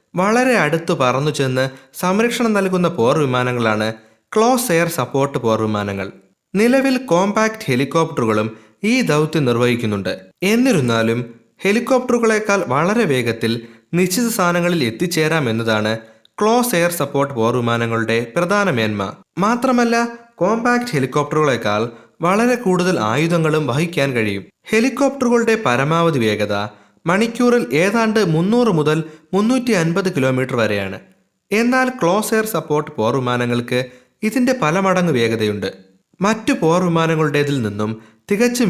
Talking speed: 100 wpm